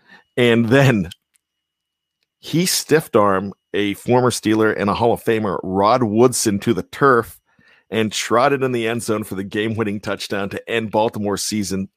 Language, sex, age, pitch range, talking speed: English, male, 50-69, 100-125 Hz, 160 wpm